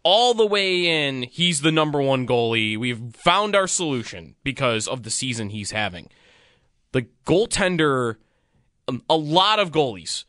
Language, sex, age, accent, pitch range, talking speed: English, male, 20-39, American, 120-170 Hz, 145 wpm